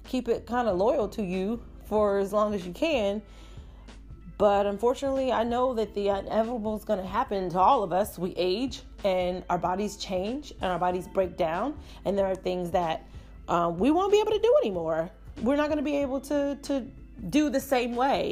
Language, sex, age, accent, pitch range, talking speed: English, female, 30-49, American, 165-220 Hz, 210 wpm